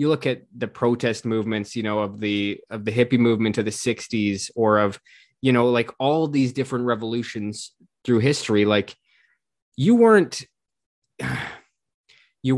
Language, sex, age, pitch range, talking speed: English, male, 20-39, 110-135 Hz, 155 wpm